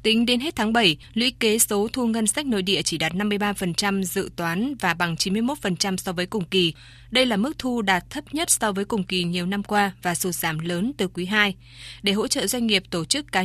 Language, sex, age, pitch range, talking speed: Vietnamese, female, 20-39, 175-220 Hz, 240 wpm